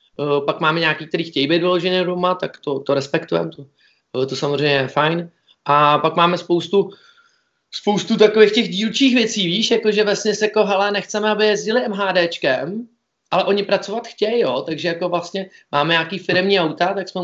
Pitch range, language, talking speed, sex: 160-190 Hz, Czech, 180 wpm, male